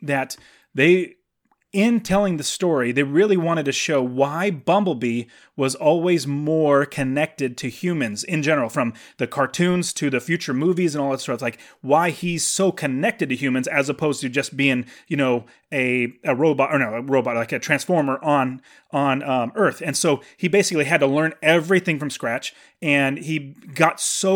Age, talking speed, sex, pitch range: 30-49, 185 wpm, male, 140-175 Hz